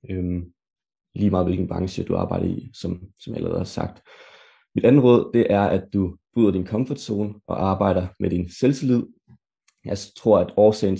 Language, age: Danish, 30-49